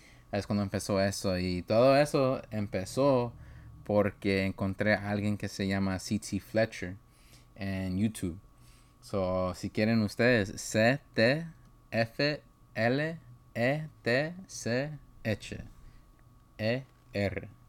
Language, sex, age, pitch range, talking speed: English, male, 20-39, 95-125 Hz, 80 wpm